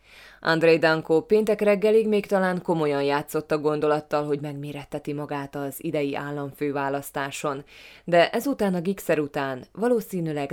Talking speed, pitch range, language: 125 wpm, 145-185 Hz, Hungarian